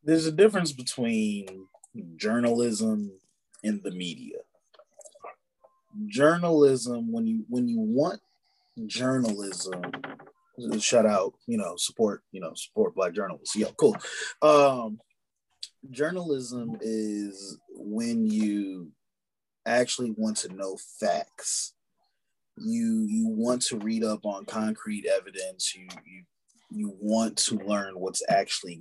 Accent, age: American, 30-49